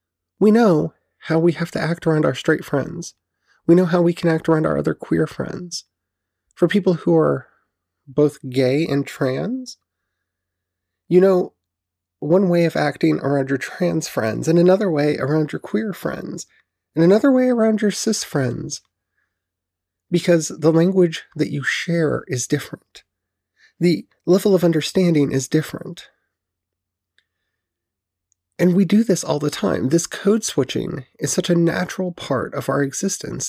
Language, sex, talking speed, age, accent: English, male, 150 wpm, 30-49, American